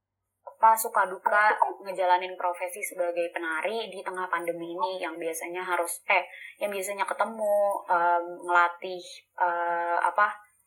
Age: 20-39